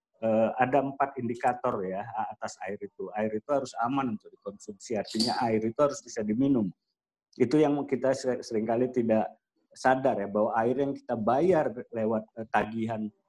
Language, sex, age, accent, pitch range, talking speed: Indonesian, male, 50-69, native, 110-140 Hz, 150 wpm